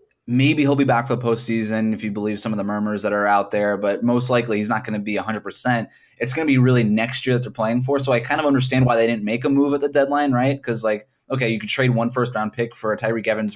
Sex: male